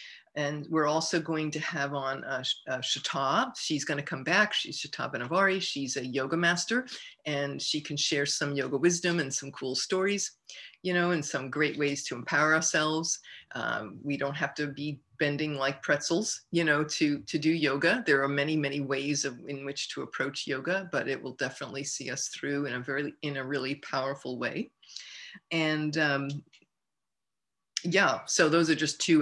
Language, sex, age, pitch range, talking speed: English, female, 50-69, 140-165 Hz, 185 wpm